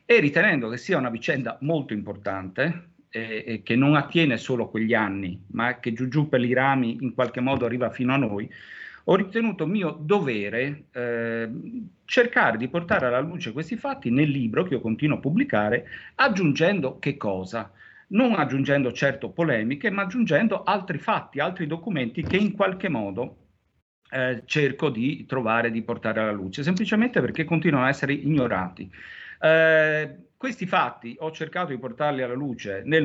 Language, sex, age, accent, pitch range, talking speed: Italian, male, 50-69, native, 120-165 Hz, 165 wpm